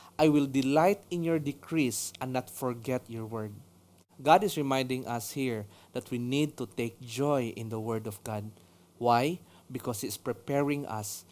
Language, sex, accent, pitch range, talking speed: English, male, Filipino, 115-145 Hz, 175 wpm